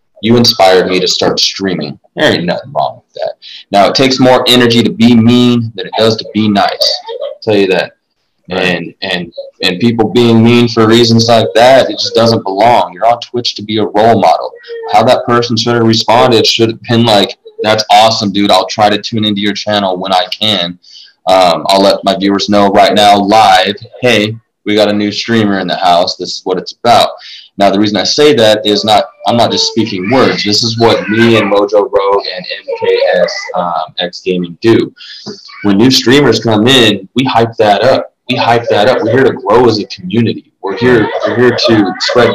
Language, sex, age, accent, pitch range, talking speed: English, male, 20-39, American, 105-125 Hz, 215 wpm